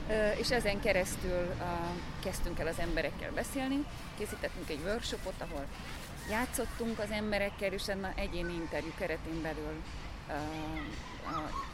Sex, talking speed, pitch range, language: female, 125 wpm, 150-205 Hz, Hungarian